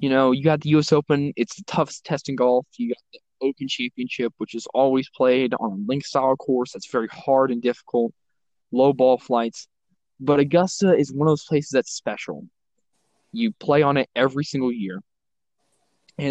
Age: 10-29